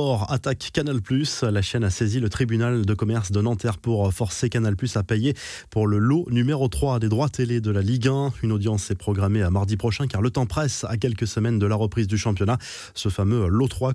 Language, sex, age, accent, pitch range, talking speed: French, male, 20-39, French, 105-130 Hz, 225 wpm